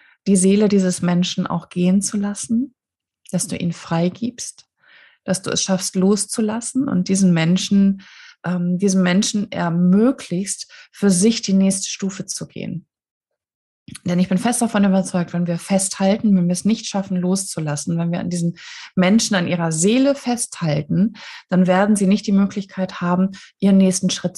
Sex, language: female, German